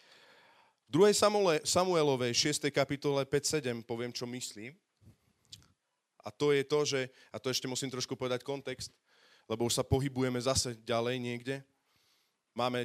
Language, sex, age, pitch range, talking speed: Slovak, male, 30-49, 120-145 Hz, 135 wpm